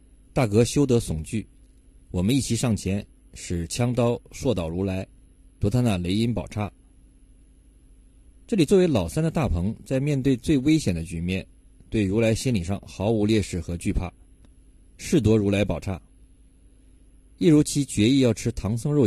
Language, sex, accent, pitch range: Chinese, male, native, 90-115 Hz